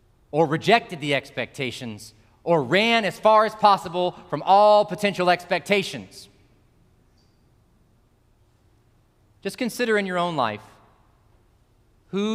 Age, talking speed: 40-59, 100 wpm